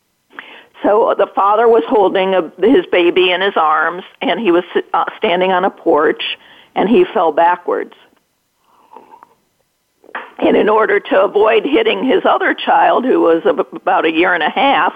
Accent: American